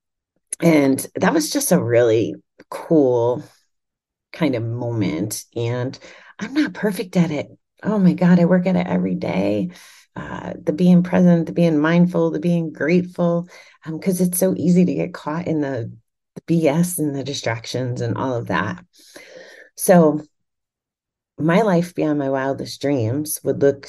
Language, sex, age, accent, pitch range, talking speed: English, female, 30-49, American, 125-180 Hz, 160 wpm